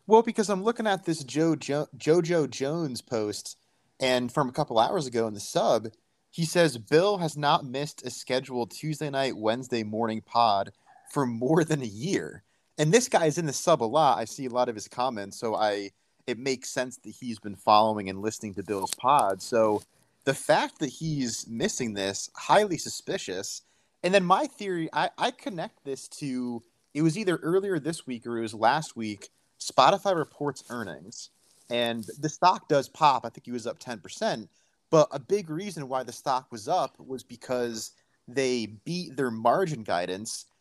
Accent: American